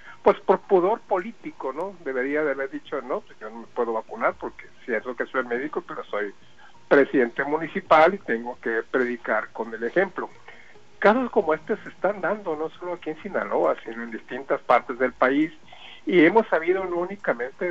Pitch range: 130-190 Hz